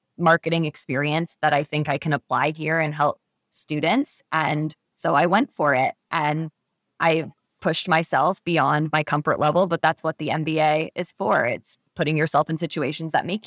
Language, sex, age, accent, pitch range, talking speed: English, female, 20-39, American, 155-185 Hz, 180 wpm